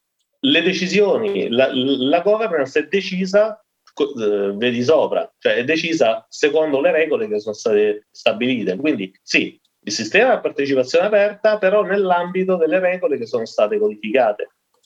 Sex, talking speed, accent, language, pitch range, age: male, 145 wpm, native, Italian, 160-270 Hz, 40-59